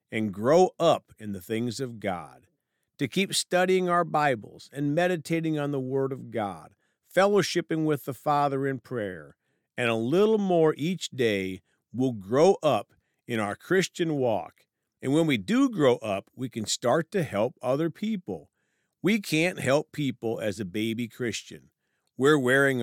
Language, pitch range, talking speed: English, 110-165 Hz, 165 wpm